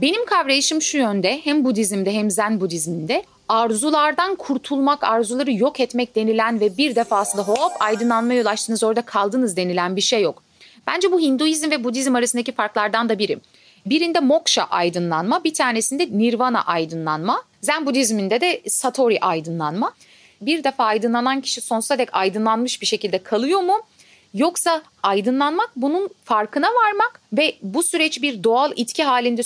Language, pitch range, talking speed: Turkish, 215-290 Hz, 145 wpm